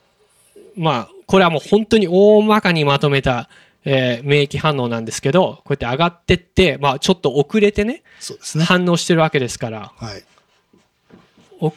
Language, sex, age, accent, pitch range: Japanese, male, 20-39, native, 125-195 Hz